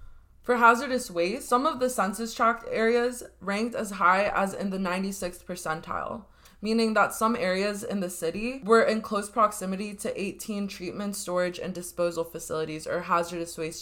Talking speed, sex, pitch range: 165 wpm, female, 175-210 Hz